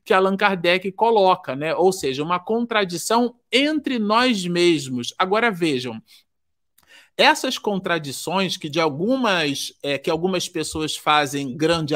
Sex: male